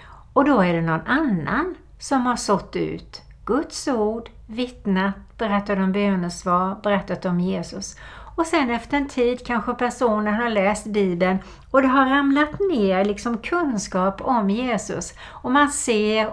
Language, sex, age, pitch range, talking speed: Swedish, female, 60-79, 180-240 Hz, 150 wpm